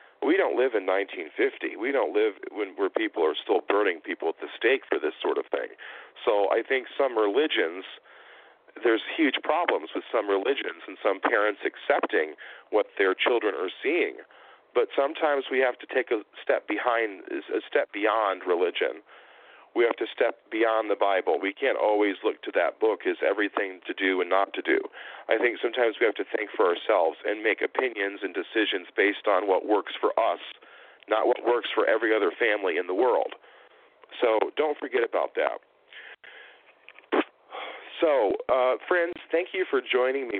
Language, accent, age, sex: English, American, 40-59, male